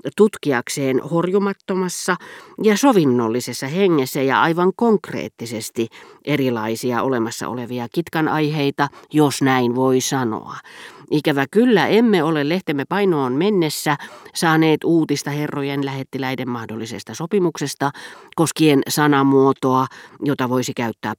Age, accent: 40-59, native